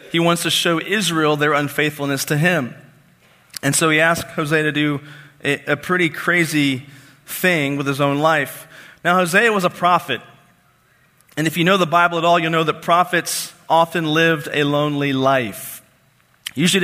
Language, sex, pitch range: English, male, 145-175 Hz